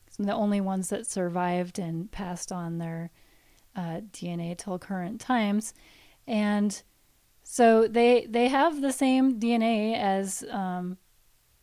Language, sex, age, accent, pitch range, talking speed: English, female, 30-49, American, 195-235 Hz, 125 wpm